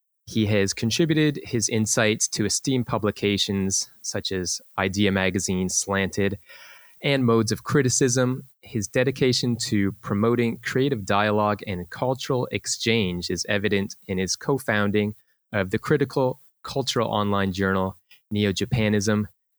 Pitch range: 100-120 Hz